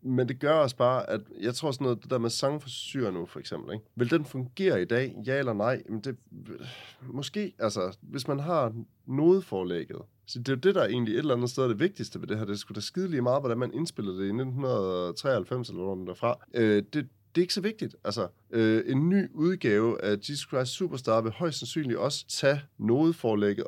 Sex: male